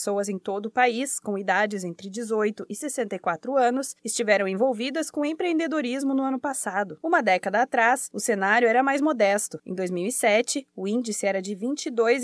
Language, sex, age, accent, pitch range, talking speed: Portuguese, female, 20-39, Brazilian, 210-265 Hz, 165 wpm